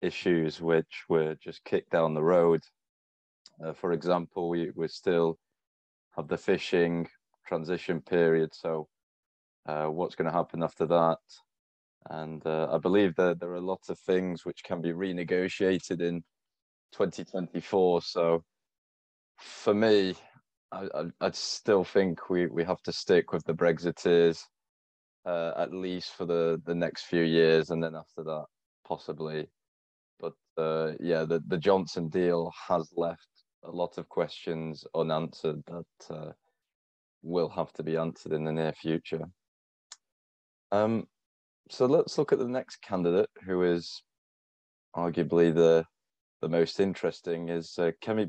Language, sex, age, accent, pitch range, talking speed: English, male, 20-39, British, 80-90 Hz, 140 wpm